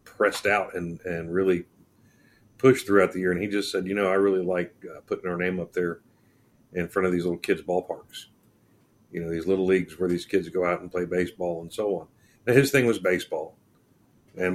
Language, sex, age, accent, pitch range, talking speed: English, male, 50-69, American, 90-105 Hz, 220 wpm